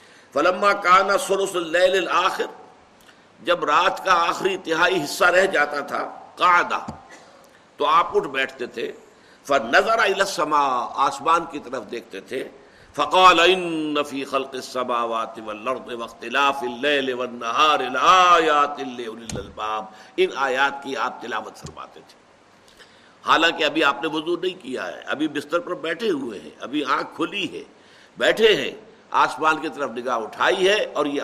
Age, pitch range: 60-79, 140-205 Hz